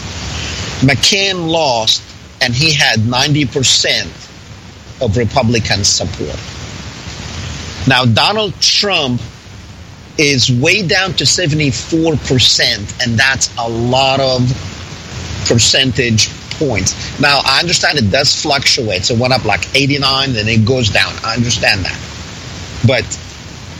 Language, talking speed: English, 110 wpm